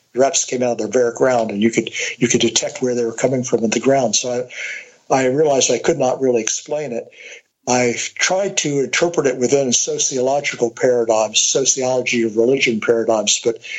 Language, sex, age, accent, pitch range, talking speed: English, male, 60-79, American, 120-135 Hz, 190 wpm